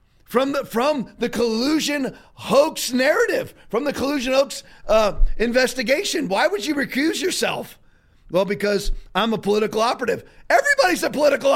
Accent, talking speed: American, 140 wpm